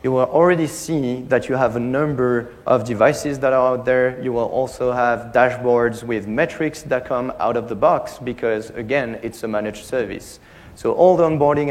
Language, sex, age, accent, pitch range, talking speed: English, male, 30-49, French, 115-135 Hz, 195 wpm